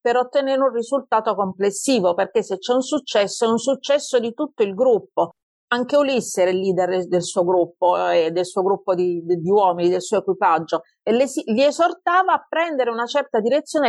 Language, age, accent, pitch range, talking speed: Italian, 40-59, native, 185-265 Hz, 190 wpm